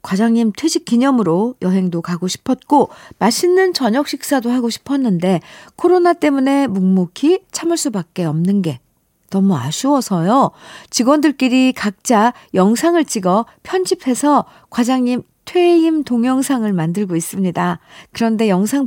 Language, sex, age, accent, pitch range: Korean, female, 50-69, native, 195-280 Hz